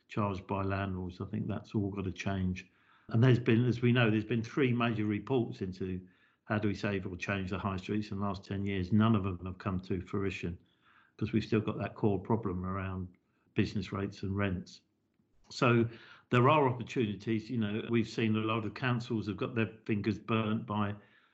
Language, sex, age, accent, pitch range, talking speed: English, male, 50-69, British, 100-115 Hz, 205 wpm